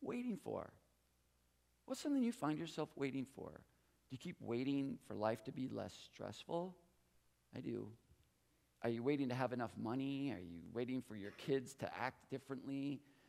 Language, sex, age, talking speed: English, male, 40-59, 165 wpm